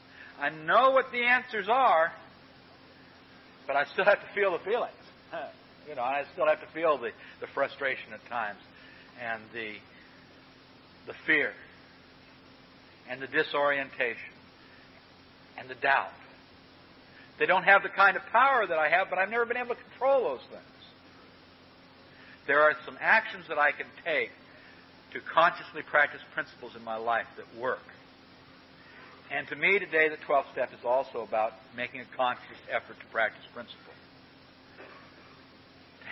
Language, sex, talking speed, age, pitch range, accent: English, male, 150 wpm, 60-79, 135-195 Hz, American